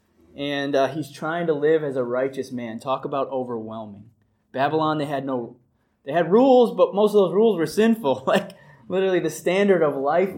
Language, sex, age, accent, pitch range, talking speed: English, male, 20-39, American, 115-155 Hz, 190 wpm